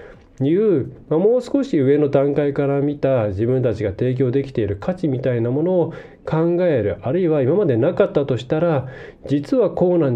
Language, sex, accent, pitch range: Japanese, male, native, 115-165 Hz